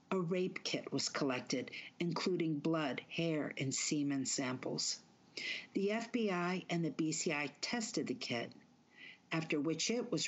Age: 50-69